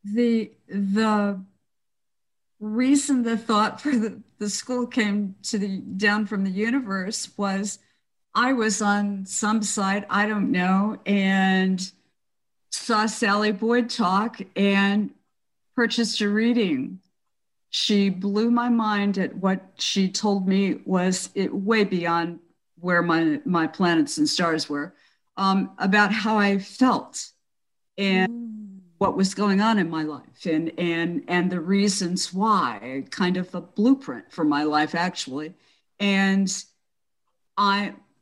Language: English